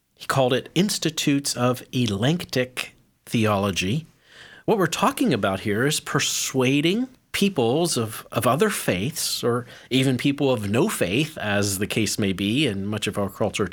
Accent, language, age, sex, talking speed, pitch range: American, English, 40-59, male, 155 wpm, 110-155 Hz